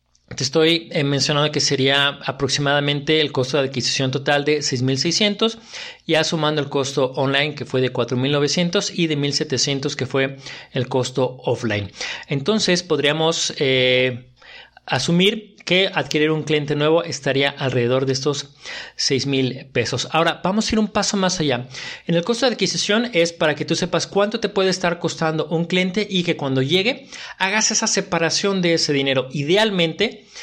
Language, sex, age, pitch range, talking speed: Spanish, male, 40-59, 140-180 Hz, 160 wpm